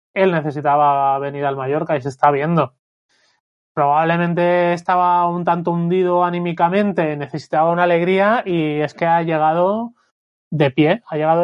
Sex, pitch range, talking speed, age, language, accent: male, 155-185 Hz, 140 wpm, 30-49, Spanish, Spanish